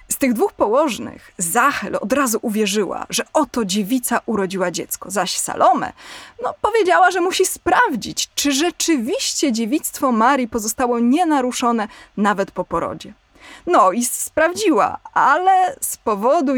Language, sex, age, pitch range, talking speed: Polish, female, 20-39, 205-285 Hz, 125 wpm